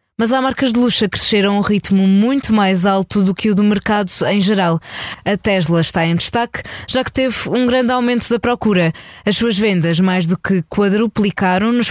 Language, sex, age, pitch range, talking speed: Portuguese, female, 20-39, 185-225 Hz, 205 wpm